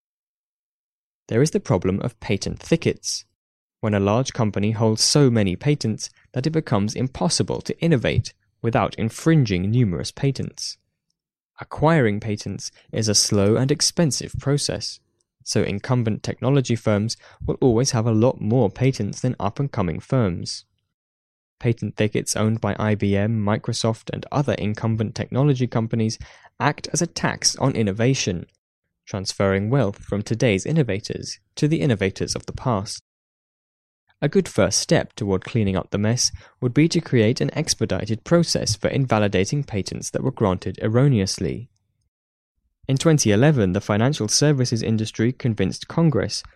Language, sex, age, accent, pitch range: Chinese, male, 10-29, British, 100-135 Hz